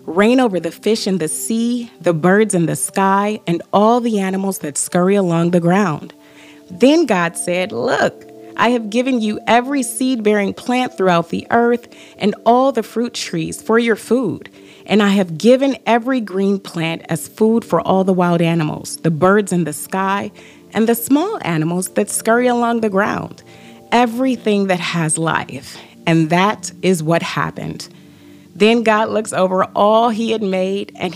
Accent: American